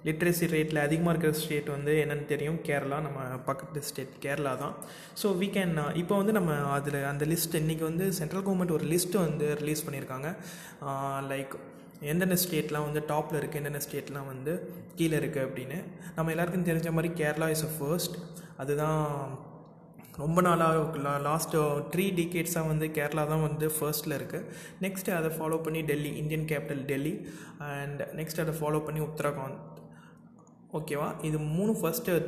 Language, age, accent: Tamil, 20-39, native